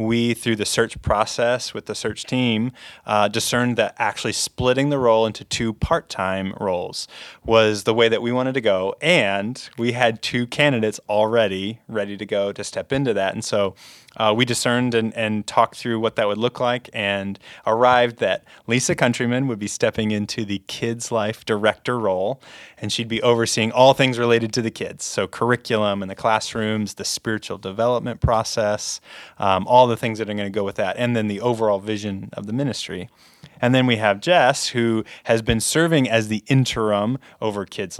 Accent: American